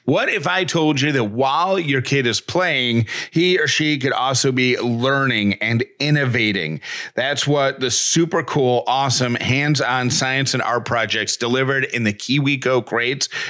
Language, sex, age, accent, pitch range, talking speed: English, male, 30-49, American, 115-135 Hz, 160 wpm